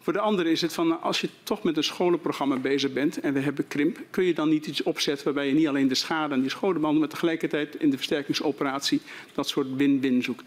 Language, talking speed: Dutch, 245 wpm